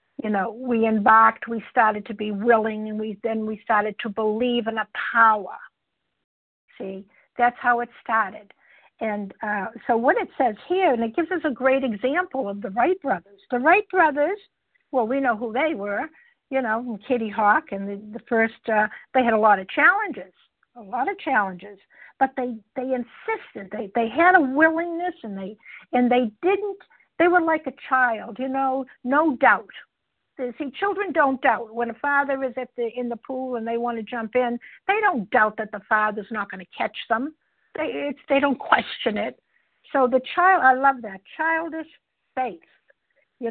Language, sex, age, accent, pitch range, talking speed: English, female, 60-79, American, 225-295 Hz, 190 wpm